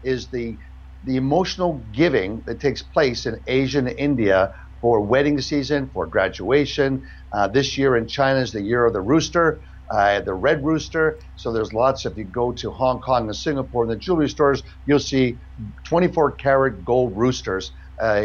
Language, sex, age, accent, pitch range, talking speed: English, male, 60-79, American, 110-150 Hz, 175 wpm